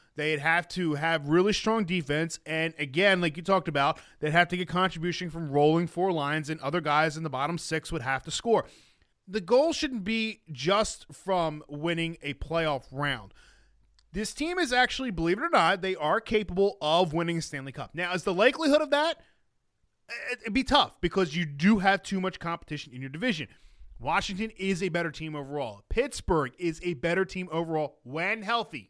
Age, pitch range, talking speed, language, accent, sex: 20-39, 160-220 Hz, 190 wpm, English, American, male